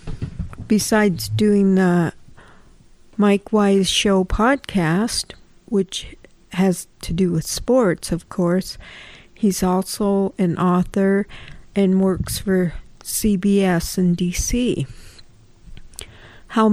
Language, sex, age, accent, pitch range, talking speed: English, female, 50-69, American, 185-205 Hz, 95 wpm